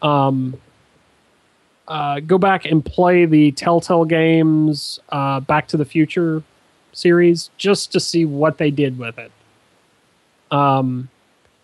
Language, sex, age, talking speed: English, male, 30-49, 125 wpm